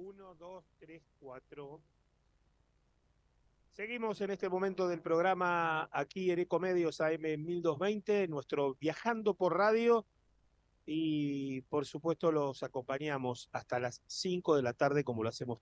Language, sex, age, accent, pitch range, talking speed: Italian, male, 30-49, Argentinian, 125-170 Hz, 125 wpm